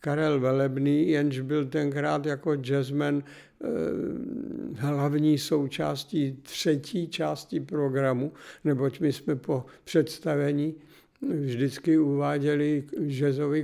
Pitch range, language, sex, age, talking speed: 140-155 Hz, Czech, male, 60-79, 90 wpm